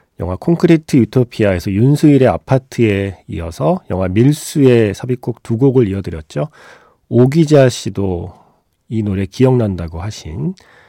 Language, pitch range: Korean, 90-130 Hz